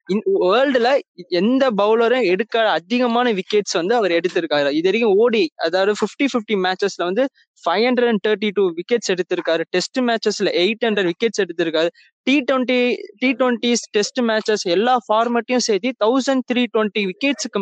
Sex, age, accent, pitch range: male, 20-39, native, 200-255 Hz